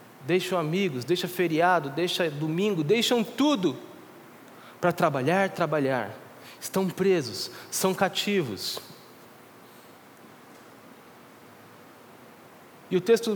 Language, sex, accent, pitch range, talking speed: Portuguese, male, Brazilian, 170-205 Hz, 80 wpm